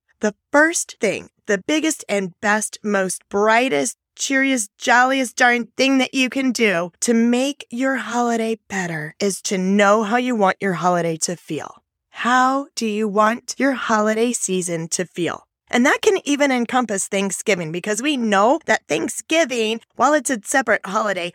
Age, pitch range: 20-39, 195-255 Hz